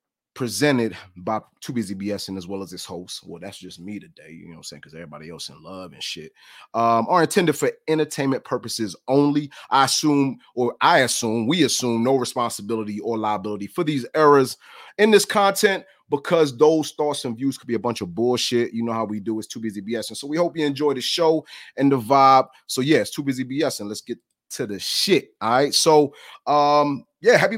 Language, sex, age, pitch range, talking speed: English, male, 30-49, 105-140 Hz, 220 wpm